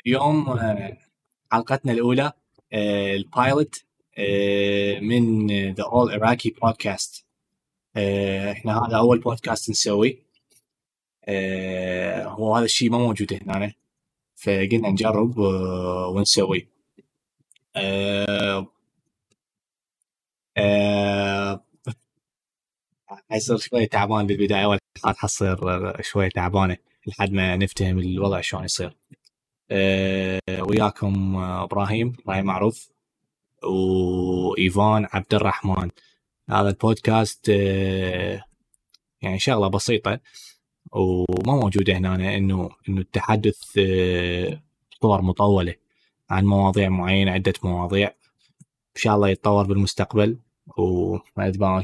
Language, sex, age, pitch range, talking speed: Arabic, male, 20-39, 95-110 Hz, 85 wpm